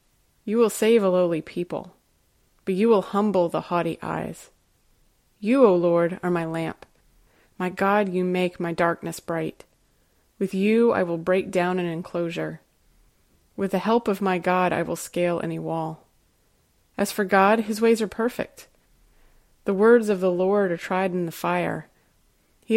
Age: 30-49